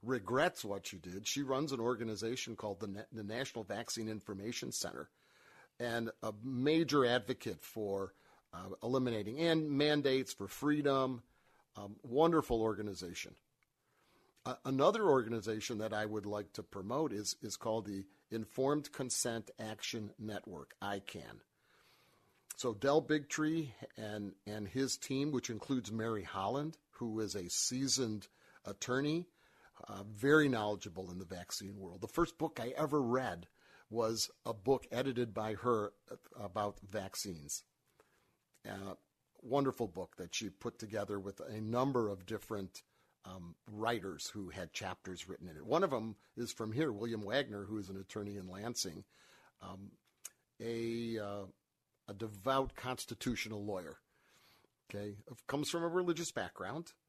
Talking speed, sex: 140 wpm, male